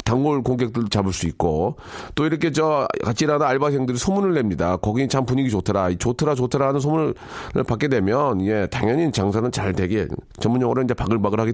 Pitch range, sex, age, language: 110-160 Hz, male, 40-59, Korean